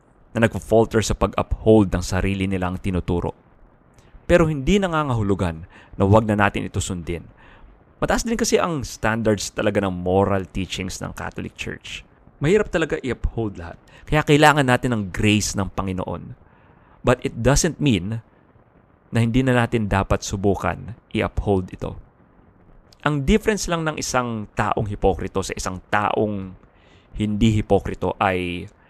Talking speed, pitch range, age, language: 140 wpm, 95-120 Hz, 20-39, English